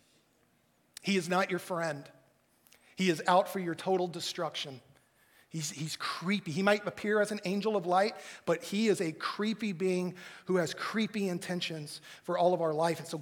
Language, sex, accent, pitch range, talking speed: English, male, American, 150-205 Hz, 180 wpm